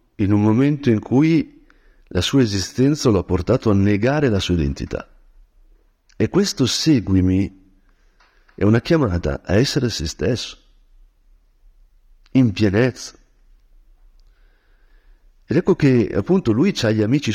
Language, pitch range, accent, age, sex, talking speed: Italian, 95-140 Hz, native, 50-69, male, 125 wpm